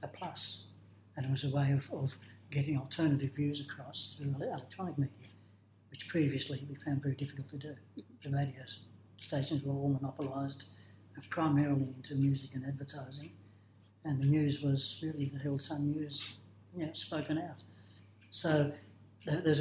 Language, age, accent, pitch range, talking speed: English, 60-79, British, 105-145 Hz, 150 wpm